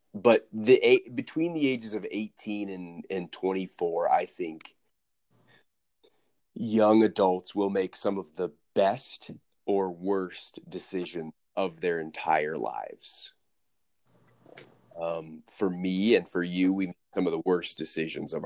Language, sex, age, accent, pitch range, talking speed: English, male, 30-49, American, 90-110 Hz, 135 wpm